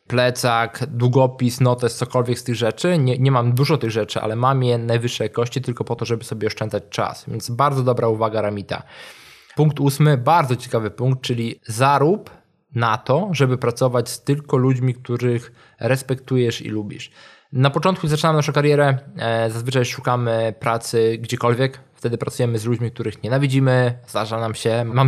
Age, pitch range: 20-39, 115-135 Hz